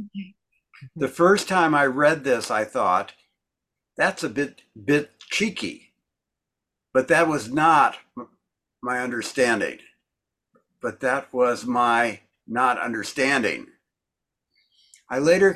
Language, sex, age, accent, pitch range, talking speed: English, male, 60-79, American, 120-160 Hz, 105 wpm